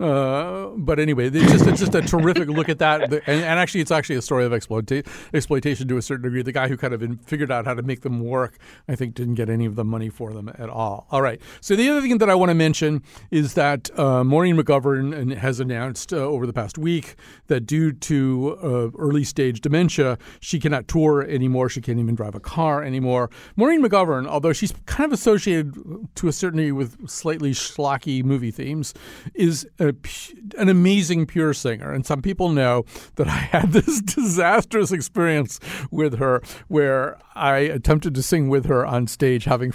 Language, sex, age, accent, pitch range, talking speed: English, male, 40-59, American, 125-160 Hz, 200 wpm